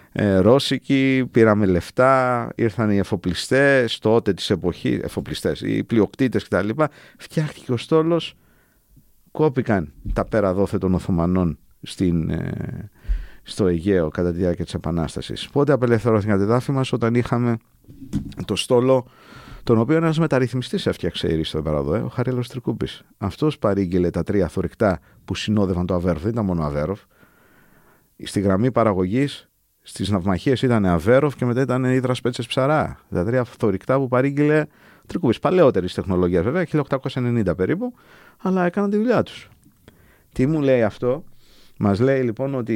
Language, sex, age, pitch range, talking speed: Greek, male, 50-69, 100-135 Hz, 140 wpm